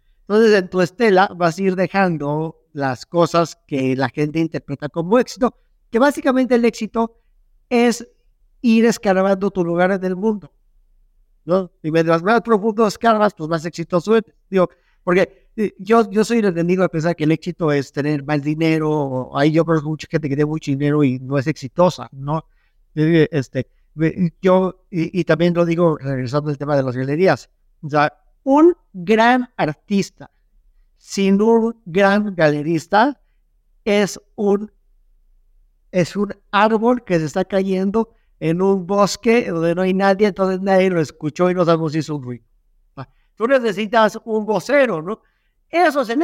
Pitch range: 160-215 Hz